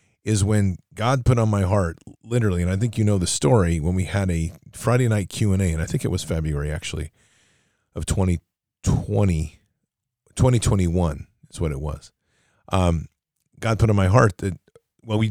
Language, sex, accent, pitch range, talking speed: English, male, American, 85-110 Hz, 175 wpm